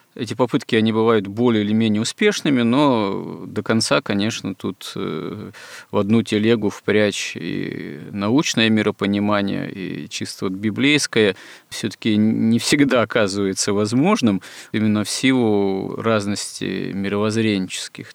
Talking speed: 115 wpm